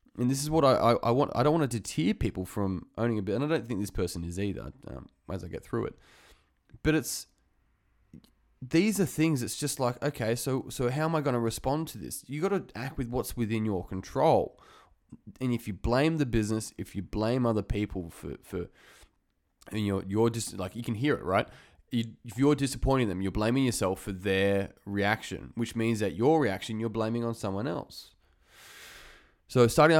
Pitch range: 95-120 Hz